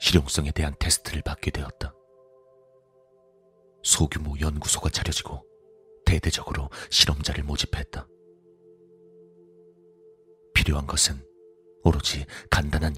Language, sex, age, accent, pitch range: Korean, male, 40-59, native, 75-110 Hz